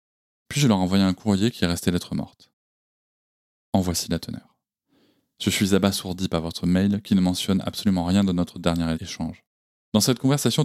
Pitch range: 90-105 Hz